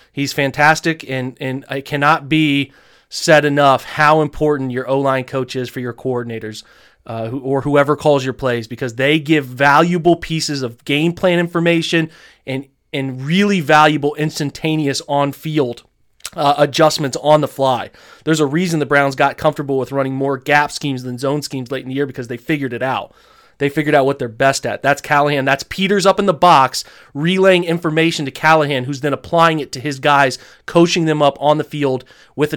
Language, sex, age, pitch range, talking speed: English, male, 30-49, 135-155 Hz, 185 wpm